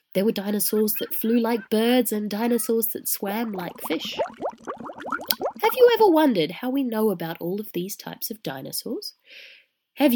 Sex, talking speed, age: female, 165 wpm, 20-39